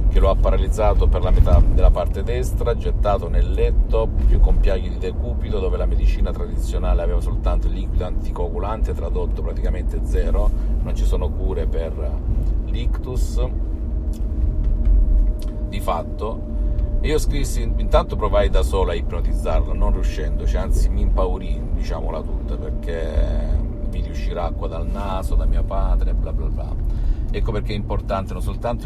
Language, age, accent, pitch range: Italian, 50-69, native, 75-95 Hz